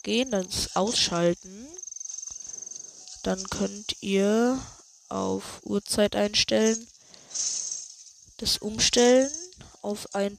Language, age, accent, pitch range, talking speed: German, 20-39, German, 190-245 Hz, 75 wpm